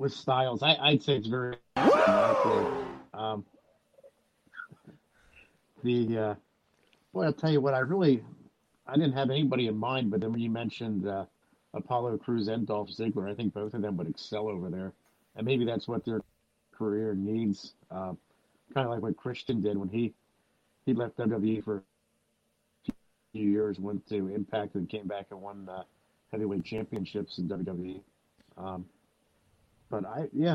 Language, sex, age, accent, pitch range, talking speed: English, male, 50-69, American, 100-125 Hz, 165 wpm